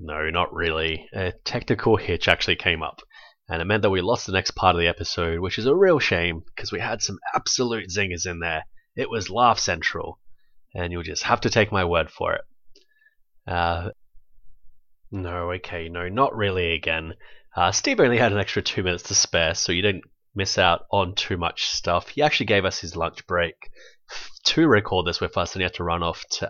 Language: English